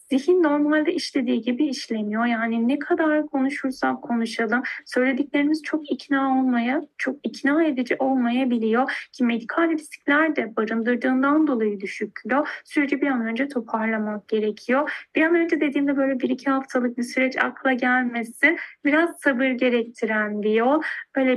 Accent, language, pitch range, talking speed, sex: native, Turkish, 230-290 Hz, 135 wpm, female